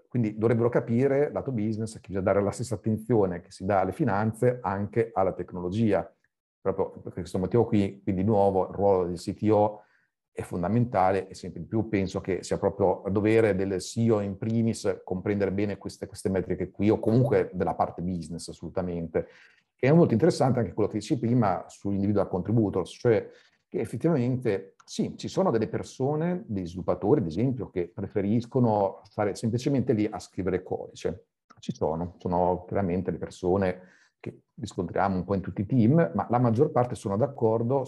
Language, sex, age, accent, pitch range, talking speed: Italian, male, 40-59, native, 95-125 Hz, 170 wpm